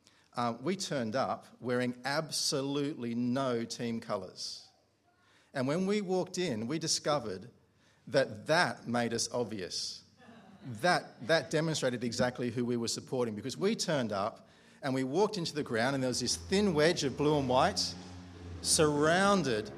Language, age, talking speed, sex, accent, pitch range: English, 40-59, 150 wpm, male, Australian, 120-165 Hz